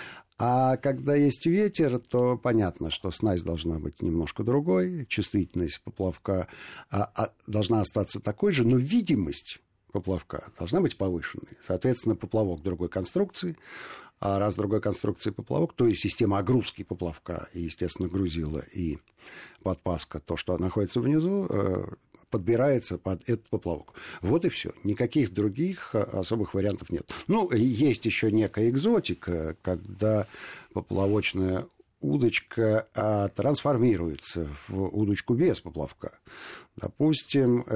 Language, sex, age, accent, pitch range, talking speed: Russian, male, 50-69, native, 90-120 Hz, 120 wpm